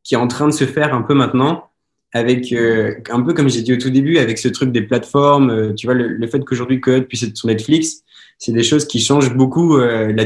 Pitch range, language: 110-135 Hz, French